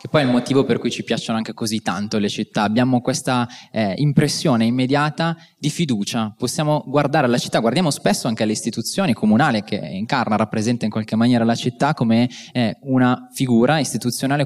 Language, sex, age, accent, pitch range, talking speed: Italian, male, 20-39, native, 110-130 Hz, 185 wpm